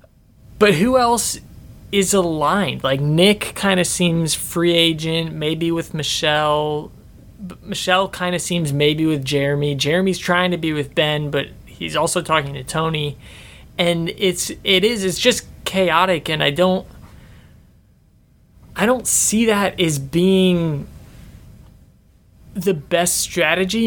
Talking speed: 135 wpm